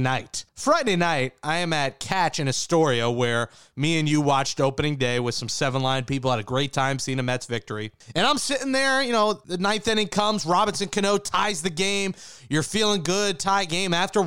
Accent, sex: American, male